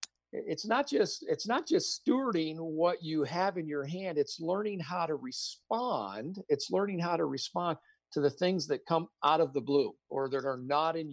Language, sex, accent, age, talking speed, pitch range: English, male, American, 50-69, 200 wpm, 140-185 Hz